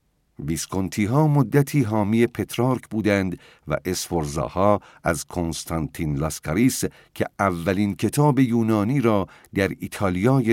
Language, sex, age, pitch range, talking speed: Persian, male, 50-69, 85-110 Hz, 105 wpm